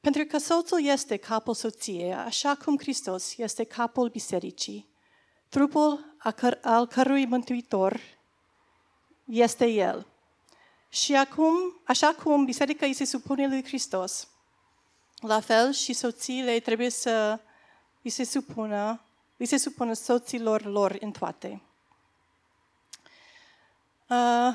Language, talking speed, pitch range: Romanian, 115 wpm, 225-280 Hz